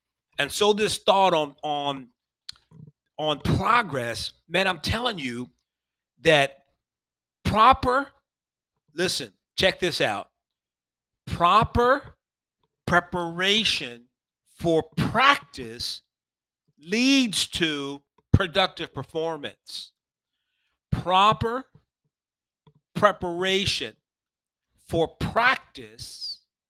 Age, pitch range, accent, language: 50-69, 130-175 Hz, American, English